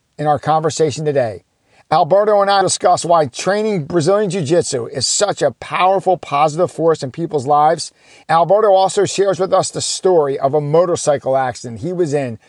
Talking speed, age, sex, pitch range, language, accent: 175 wpm, 50-69, male, 145-180 Hz, English, American